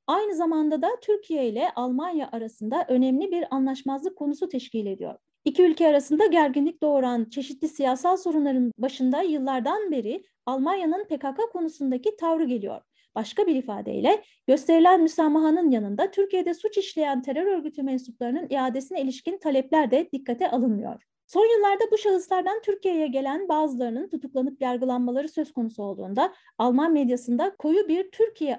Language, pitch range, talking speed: Turkish, 255-345 Hz, 135 wpm